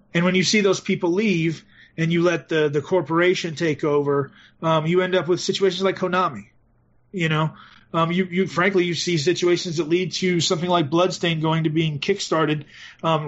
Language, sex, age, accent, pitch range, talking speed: English, male, 30-49, American, 150-175 Hz, 195 wpm